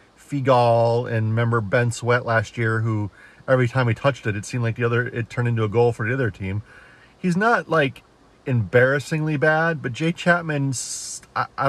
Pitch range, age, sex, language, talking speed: 120-155 Hz, 30-49, male, English, 190 wpm